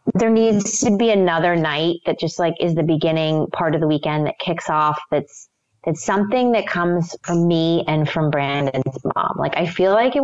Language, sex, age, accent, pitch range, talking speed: English, female, 30-49, American, 155-200 Hz, 205 wpm